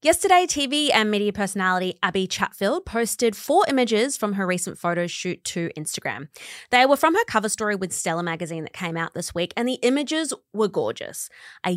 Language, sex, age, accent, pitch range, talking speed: English, female, 20-39, Australian, 180-250 Hz, 190 wpm